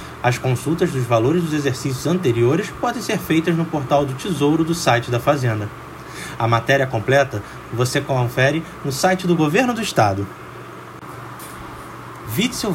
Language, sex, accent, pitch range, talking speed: Portuguese, male, Brazilian, 120-165 Hz, 140 wpm